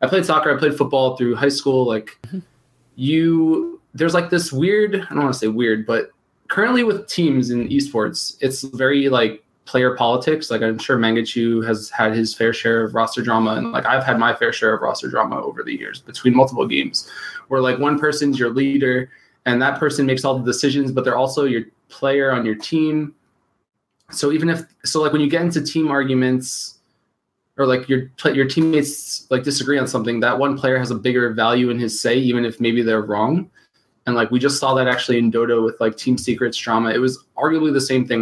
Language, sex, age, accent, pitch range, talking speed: English, male, 20-39, American, 120-145 Hz, 215 wpm